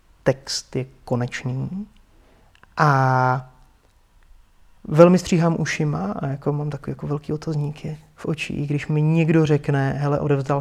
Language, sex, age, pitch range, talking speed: Czech, male, 30-49, 130-160 Hz, 125 wpm